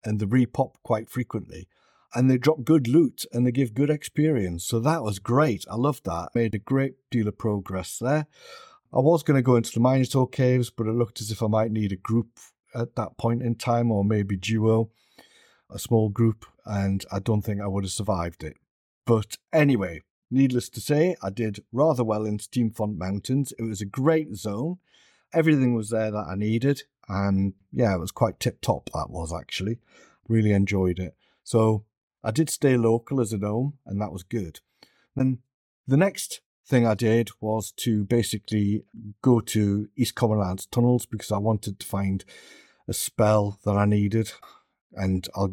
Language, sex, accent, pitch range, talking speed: English, male, British, 100-125 Hz, 185 wpm